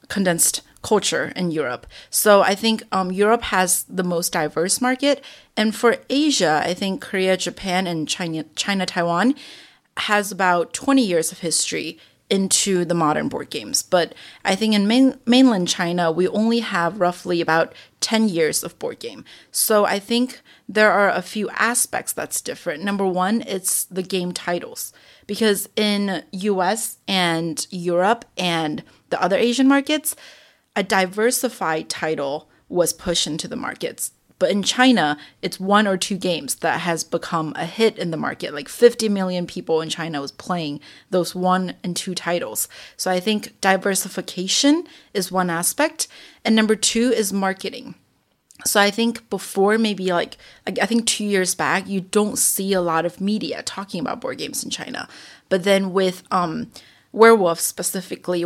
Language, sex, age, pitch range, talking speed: English, female, 30-49, 175-225 Hz, 160 wpm